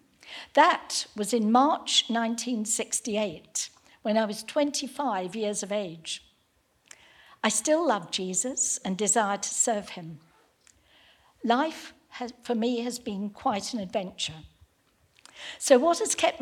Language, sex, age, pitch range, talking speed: English, female, 60-79, 205-265 Hz, 120 wpm